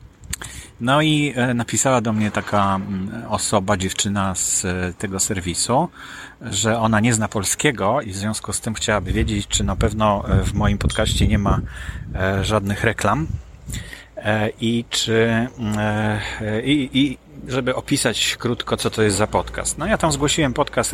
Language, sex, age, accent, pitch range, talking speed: Polish, male, 30-49, native, 105-125 Hz, 145 wpm